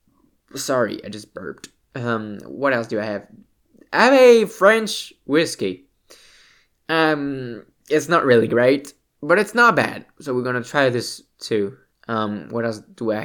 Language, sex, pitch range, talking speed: English, male, 105-145 Hz, 160 wpm